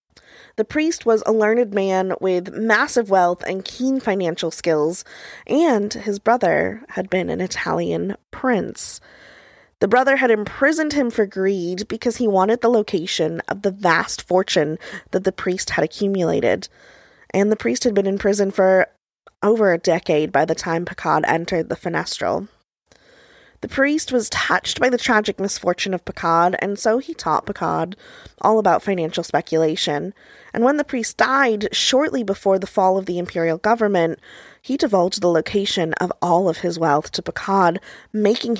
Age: 20-39